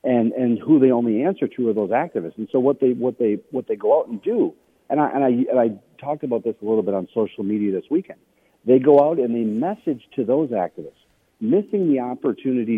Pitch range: 110-155 Hz